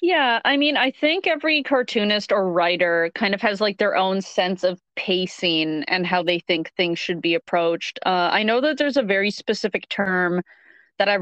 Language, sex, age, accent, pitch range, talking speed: English, female, 30-49, American, 175-205 Hz, 200 wpm